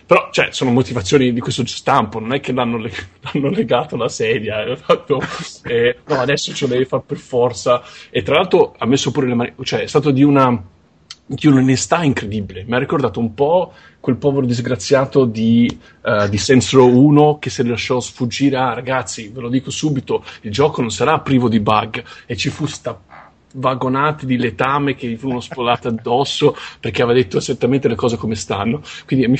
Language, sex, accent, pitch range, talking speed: Italian, male, native, 115-140 Hz, 190 wpm